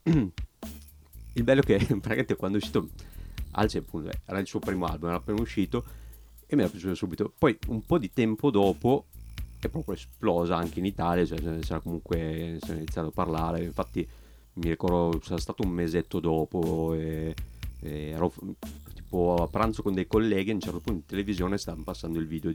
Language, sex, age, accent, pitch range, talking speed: Italian, male, 30-49, native, 80-100 Hz, 185 wpm